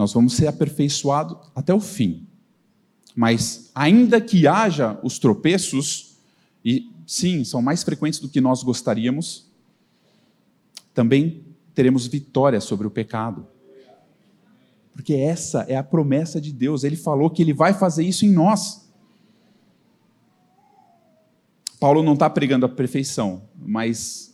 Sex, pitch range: male, 125-170 Hz